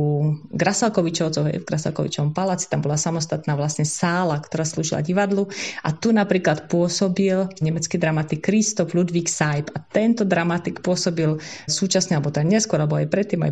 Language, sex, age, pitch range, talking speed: Slovak, female, 30-49, 155-180 Hz, 150 wpm